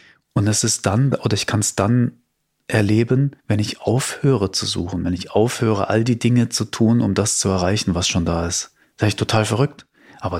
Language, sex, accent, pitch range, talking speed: German, male, German, 95-120 Hz, 215 wpm